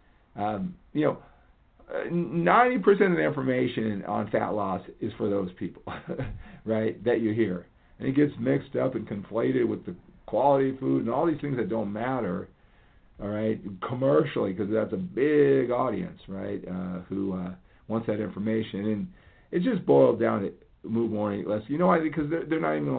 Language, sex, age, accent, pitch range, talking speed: English, male, 50-69, American, 95-120 Hz, 185 wpm